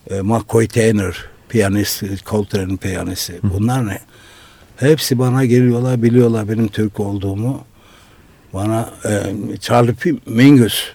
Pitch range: 105-145 Hz